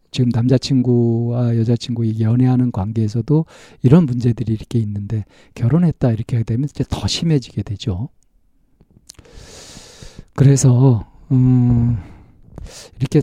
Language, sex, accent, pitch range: Korean, male, native, 115-145 Hz